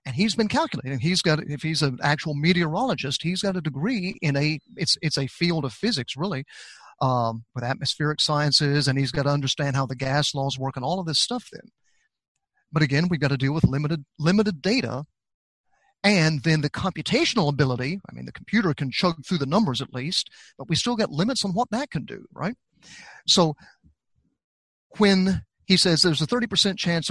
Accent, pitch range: American, 145-200 Hz